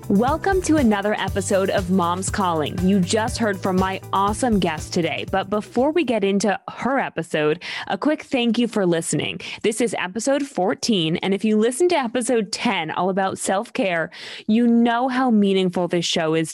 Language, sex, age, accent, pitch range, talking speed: English, female, 20-39, American, 180-235 Hz, 180 wpm